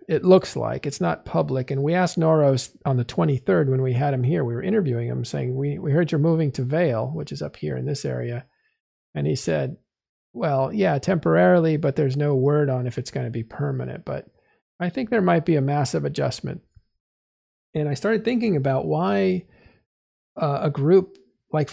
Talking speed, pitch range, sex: 200 wpm, 125-180 Hz, male